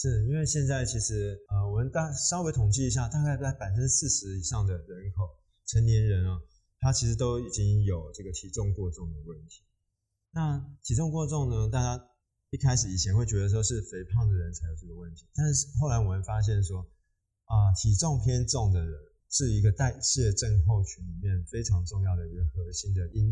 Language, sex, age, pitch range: Chinese, male, 20-39, 90-120 Hz